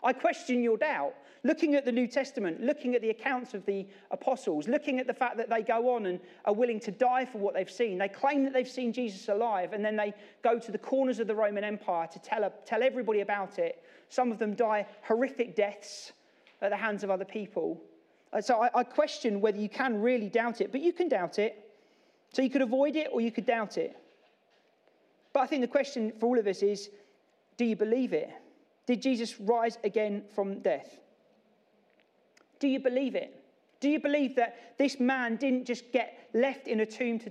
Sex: male